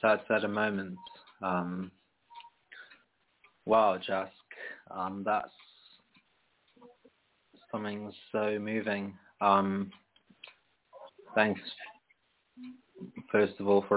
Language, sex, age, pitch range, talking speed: English, male, 20-39, 95-105 Hz, 75 wpm